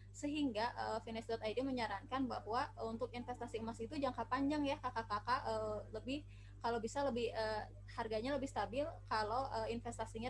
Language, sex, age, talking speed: Indonesian, female, 20-39, 145 wpm